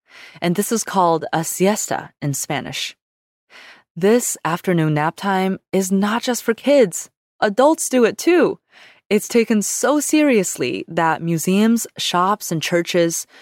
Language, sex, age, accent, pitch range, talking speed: English, female, 20-39, American, 165-235 Hz, 135 wpm